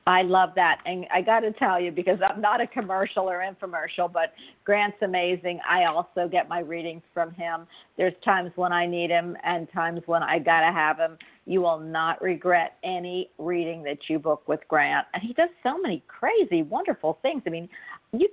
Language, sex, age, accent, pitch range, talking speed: English, female, 50-69, American, 175-245 Hz, 205 wpm